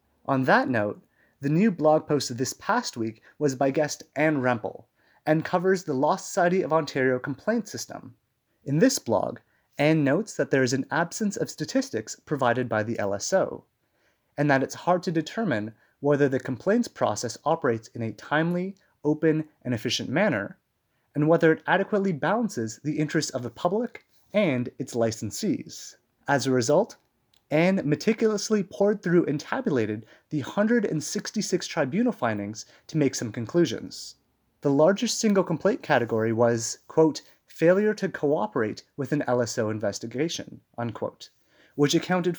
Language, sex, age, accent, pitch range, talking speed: English, male, 30-49, American, 125-170 Hz, 150 wpm